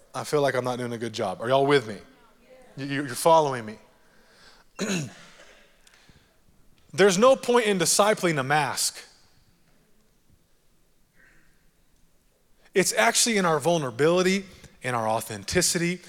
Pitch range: 140-210 Hz